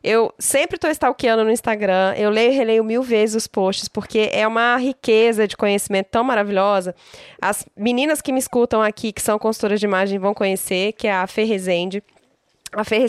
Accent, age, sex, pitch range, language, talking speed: Brazilian, 10-29, female, 200-235 Hz, Portuguese, 180 wpm